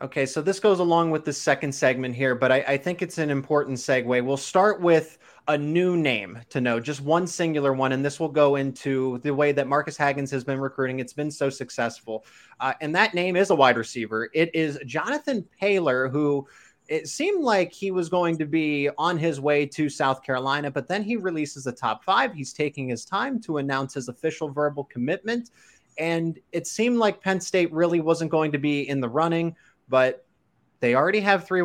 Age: 20-39